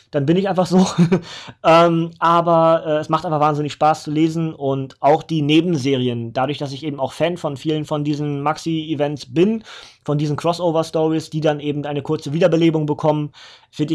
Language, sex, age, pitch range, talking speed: German, male, 20-39, 145-175 Hz, 180 wpm